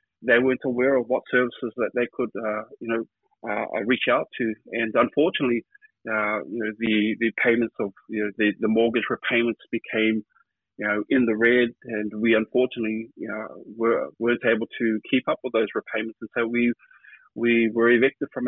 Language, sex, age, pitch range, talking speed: English, male, 30-49, 115-130 Hz, 190 wpm